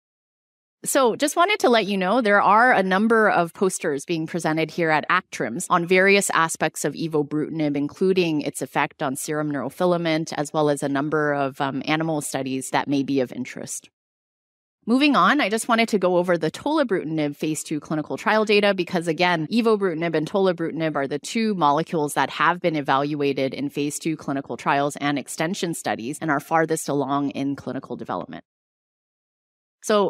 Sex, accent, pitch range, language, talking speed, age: female, American, 150-195 Hz, English, 175 wpm, 30-49